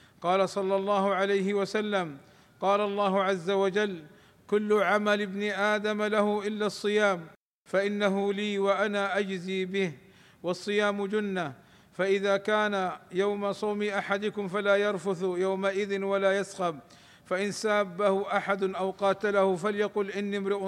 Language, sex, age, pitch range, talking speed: Arabic, male, 50-69, 190-205 Hz, 120 wpm